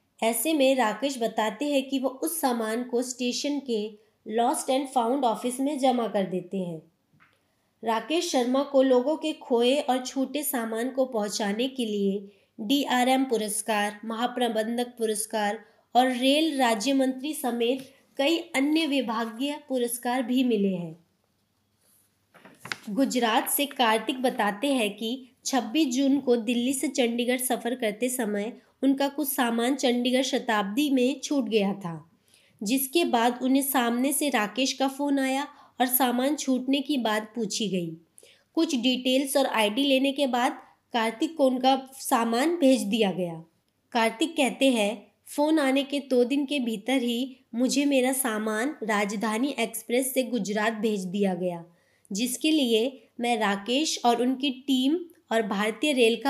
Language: English